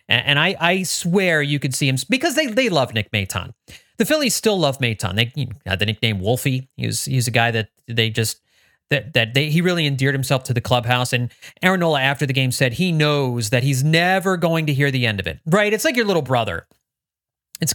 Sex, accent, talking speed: male, American, 230 wpm